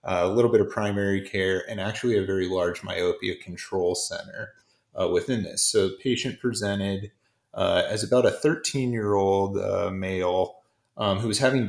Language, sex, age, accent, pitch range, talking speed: English, male, 30-49, American, 100-120 Hz, 180 wpm